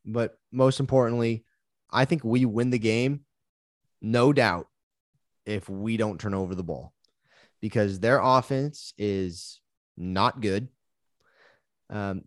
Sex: male